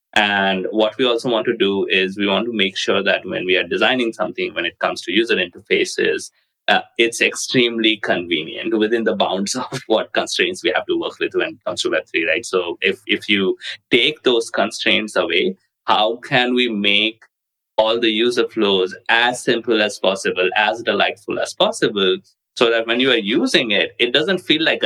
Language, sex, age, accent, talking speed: English, male, 20-39, Indian, 195 wpm